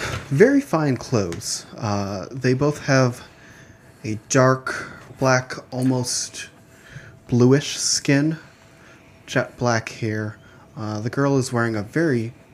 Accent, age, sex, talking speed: American, 30-49, male, 110 wpm